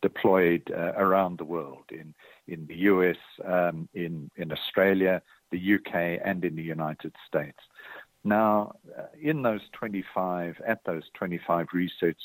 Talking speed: 135 wpm